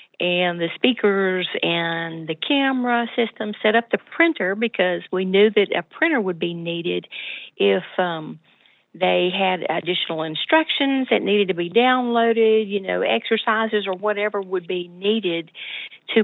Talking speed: 150 wpm